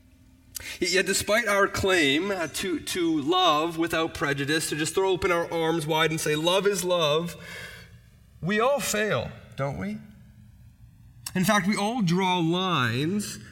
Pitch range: 160-210 Hz